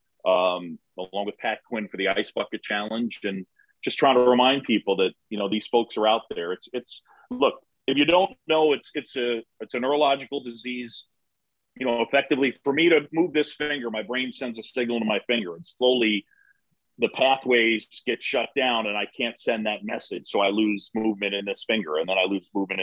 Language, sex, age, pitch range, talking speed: English, male, 40-59, 110-145 Hz, 210 wpm